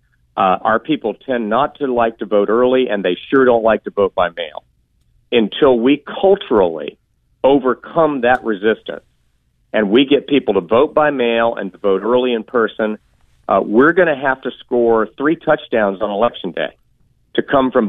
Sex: male